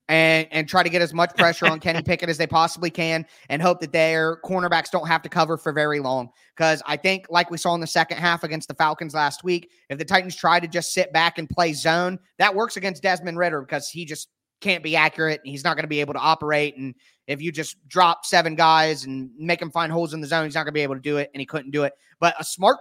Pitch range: 145-175 Hz